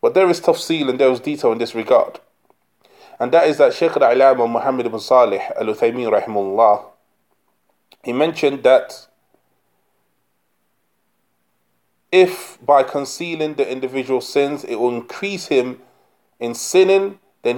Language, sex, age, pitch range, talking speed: English, male, 20-39, 125-165 Hz, 130 wpm